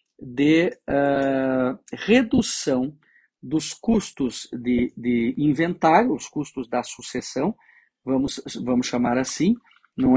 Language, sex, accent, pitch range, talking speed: Portuguese, male, Brazilian, 130-175 Hz, 95 wpm